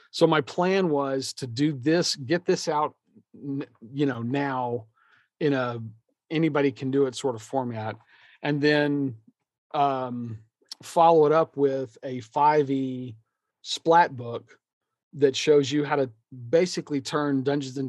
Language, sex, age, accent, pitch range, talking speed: English, male, 40-59, American, 125-155 Hz, 140 wpm